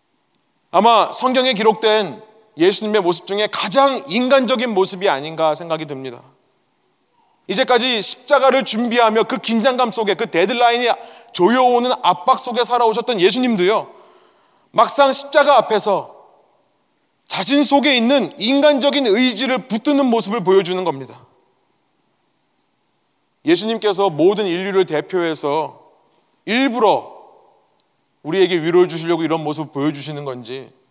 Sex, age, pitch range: male, 30-49, 175-245 Hz